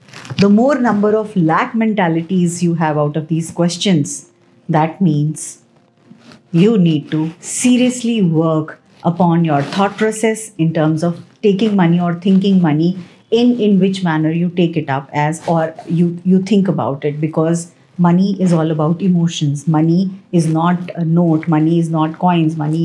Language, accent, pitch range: Hindi, native, 165-200 Hz